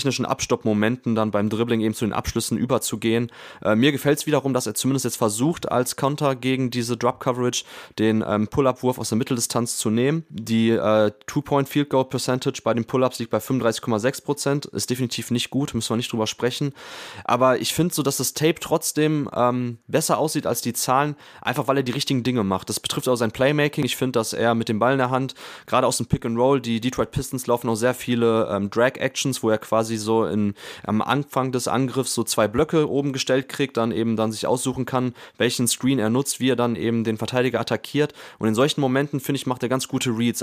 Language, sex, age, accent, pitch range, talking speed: German, male, 20-39, German, 115-135 Hz, 215 wpm